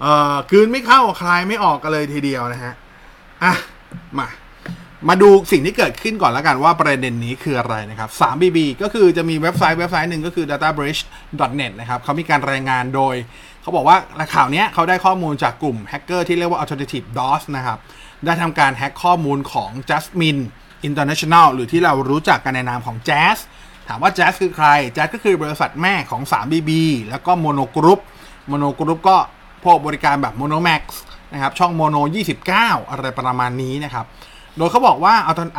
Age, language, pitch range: 20-39, Thai, 140-175 Hz